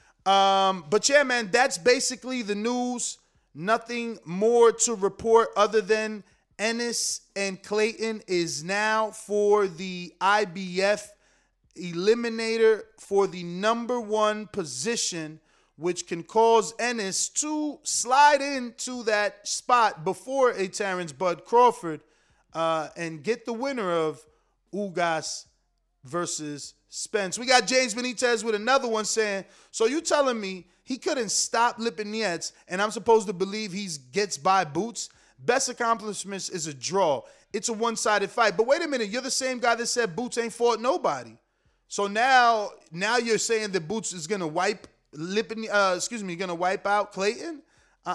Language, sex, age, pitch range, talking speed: English, male, 30-49, 180-235 Hz, 145 wpm